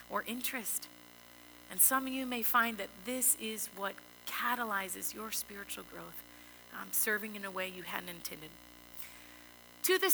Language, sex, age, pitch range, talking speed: English, female, 30-49, 175-250 Hz, 155 wpm